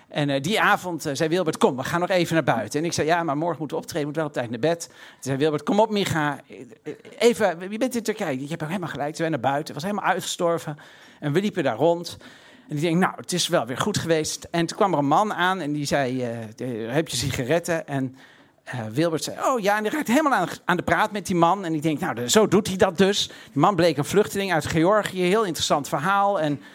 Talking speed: 270 wpm